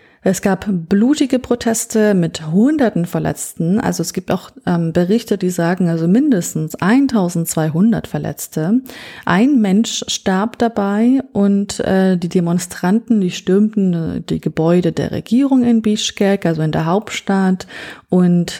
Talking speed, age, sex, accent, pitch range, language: 130 wpm, 30-49, female, German, 180-235 Hz, German